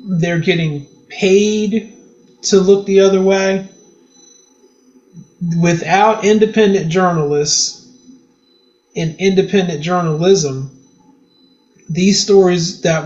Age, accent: 30-49, American